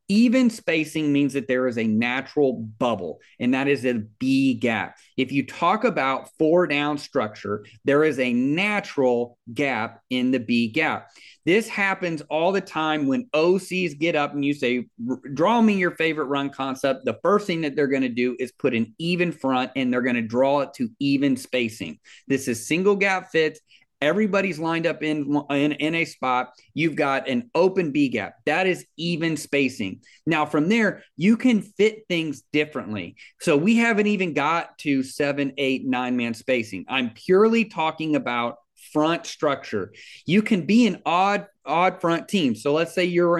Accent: American